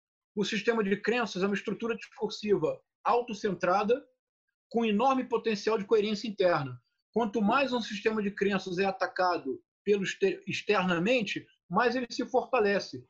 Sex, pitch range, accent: male, 190-235 Hz, Brazilian